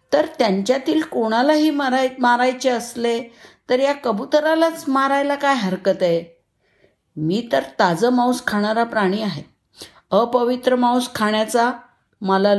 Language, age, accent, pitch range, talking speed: Marathi, 50-69, native, 190-255 Hz, 115 wpm